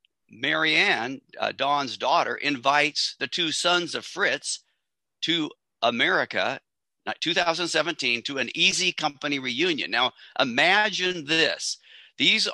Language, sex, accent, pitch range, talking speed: English, male, American, 125-175 Hz, 105 wpm